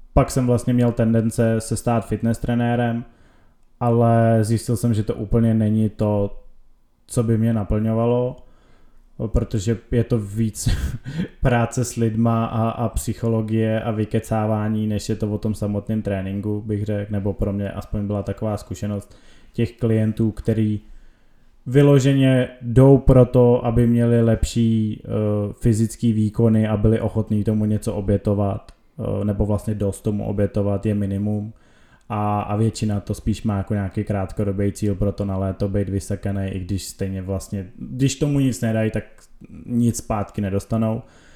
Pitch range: 105-120 Hz